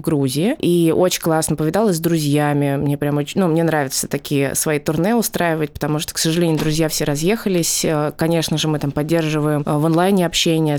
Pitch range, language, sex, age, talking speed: 150-180 Hz, Russian, female, 20-39, 180 wpm